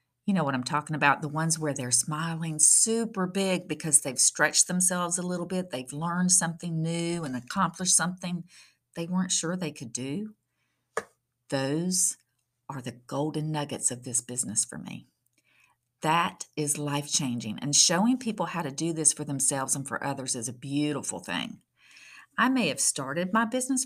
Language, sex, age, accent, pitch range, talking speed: English, female, 50-69, American, 140-205 Hz, 170 wpm